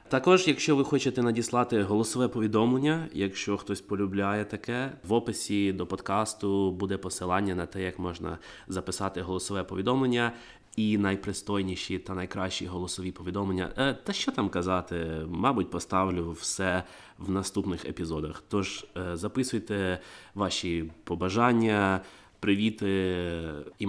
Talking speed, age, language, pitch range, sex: 115 wpm, 20-39, Ukrainian, 90-105 Hz, male